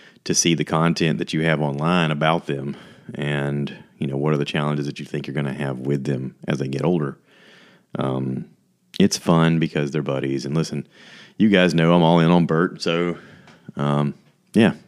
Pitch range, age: 70-85 Hz, 30-49